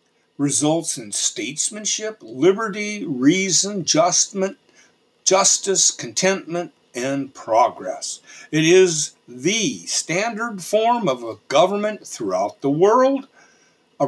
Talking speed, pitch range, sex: 90 wpm, 145-210 Hz, male